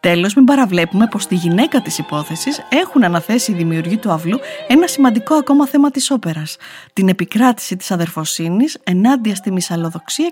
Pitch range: 180-245 Hz